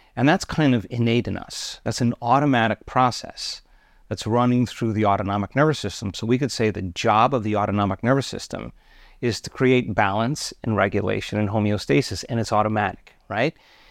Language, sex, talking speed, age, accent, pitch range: English, male, 175 wpm, 40-59, American, 105-130 Hz